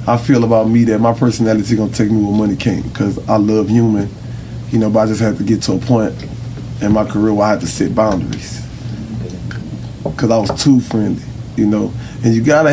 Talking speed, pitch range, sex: 220 wpm, 110-125 Hz, male